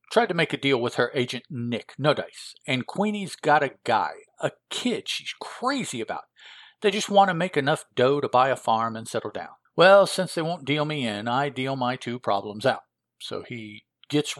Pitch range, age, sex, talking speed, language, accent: 115-150 Hz, 50-69, male, 215 wpm, English, American